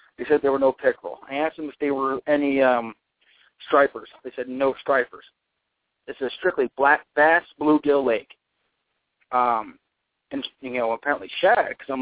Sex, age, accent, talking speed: male, 40-59, American, 170 wpm